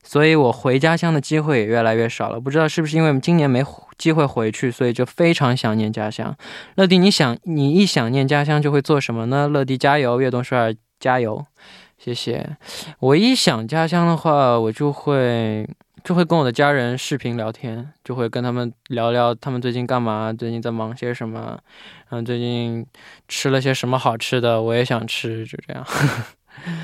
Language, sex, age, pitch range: Korean, male, 20-39, 120-155 Hz